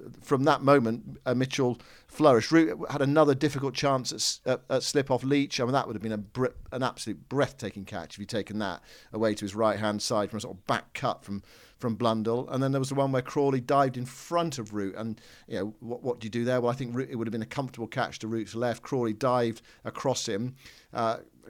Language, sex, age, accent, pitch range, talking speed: English, male, 50-69, British, 115-135 Hz, 240 wpm